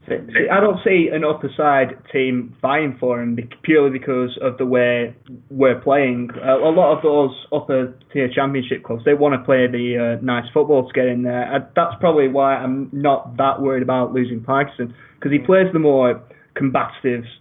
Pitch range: 125-150 Hz